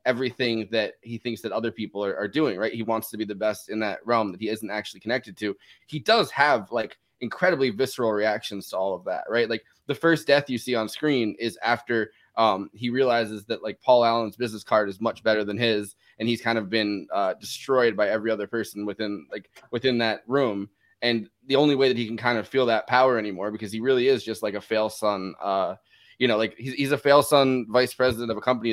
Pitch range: 110-130 Hz